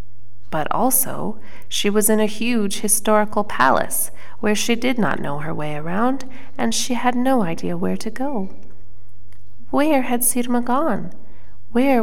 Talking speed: 150 wpm